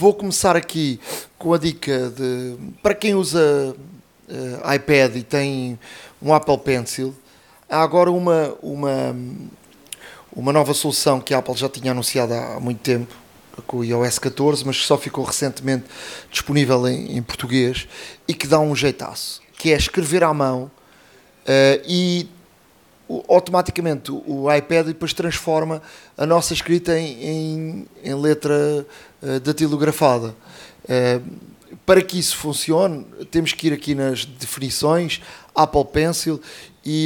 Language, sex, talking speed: Portuguese, male, 140 wpm